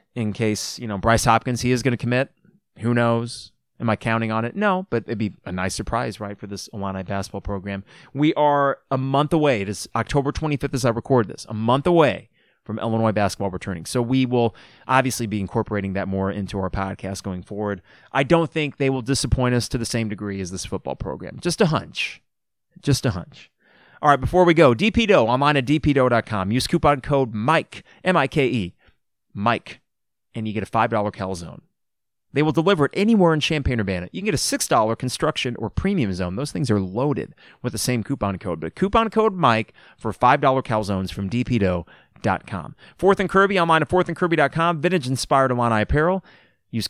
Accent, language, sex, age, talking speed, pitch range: American, English, male, 30-49, 195 wpm, 105-145 Hz